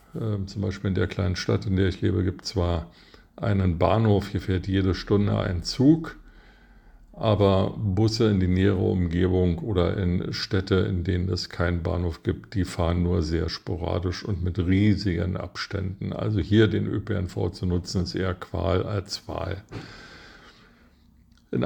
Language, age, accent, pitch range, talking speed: German, 50-69, German, 90-105 Hz, 155 wpm